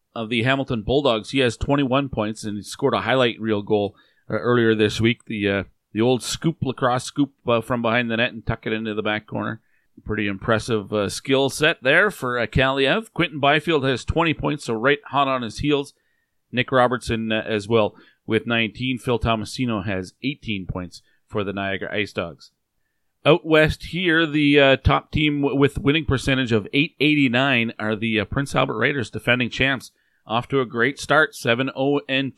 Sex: male